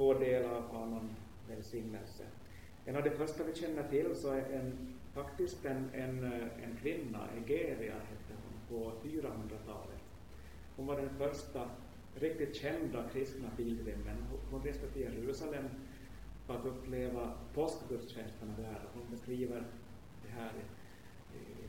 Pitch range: 110-135 Hz